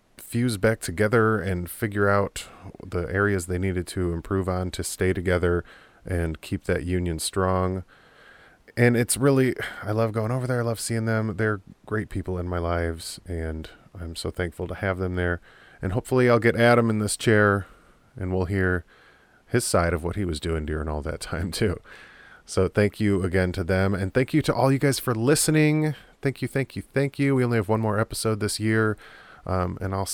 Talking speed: 205 wpm